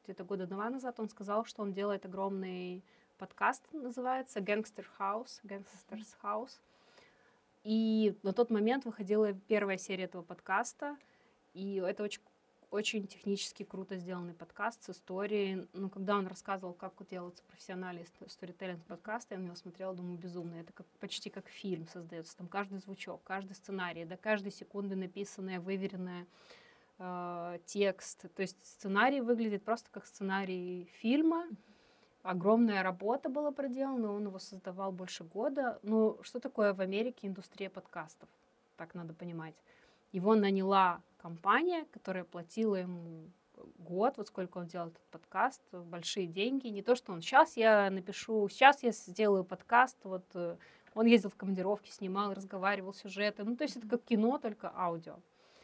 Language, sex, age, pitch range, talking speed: Romanian, female, 20-39, 185-220 Hz, 145 wpm